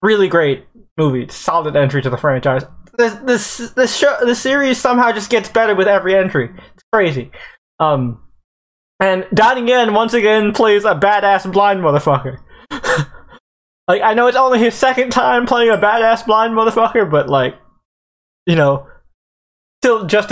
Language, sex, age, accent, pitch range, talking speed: English, male, 20-39, American, 155-230 Hz, 160 wpm